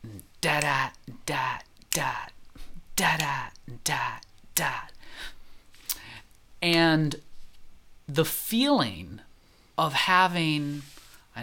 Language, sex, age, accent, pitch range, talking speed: English, male, 30-49, American, 95-115 Hz, 65 wpm